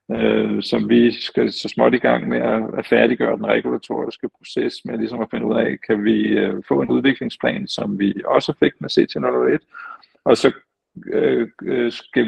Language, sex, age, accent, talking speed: Danish, male, 50-69, native, 160 wpm